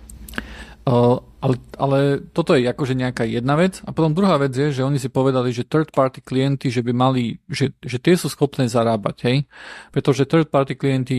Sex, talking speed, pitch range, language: male, 180 wpm, 120-135 Hz, Slovak